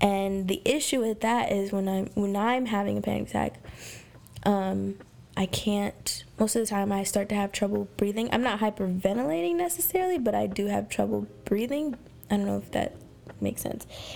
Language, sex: English, female